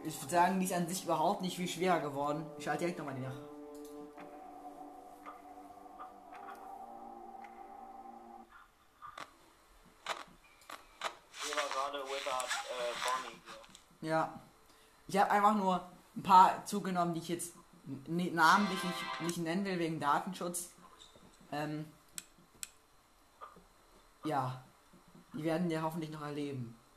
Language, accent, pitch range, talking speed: German, German, 140-185 Hz, 100 wpm